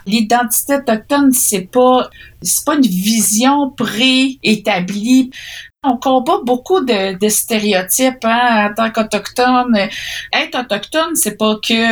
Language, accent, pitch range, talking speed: French, Canadian, 195-245 Hz, 120 wpm